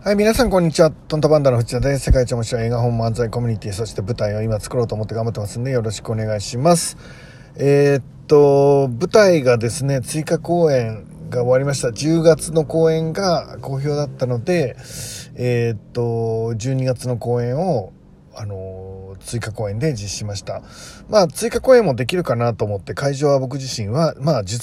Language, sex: Japanese, male